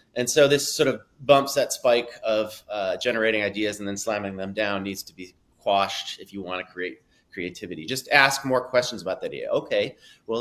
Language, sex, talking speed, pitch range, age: English, male, 210 wpm, 100-140 Hz, 30-49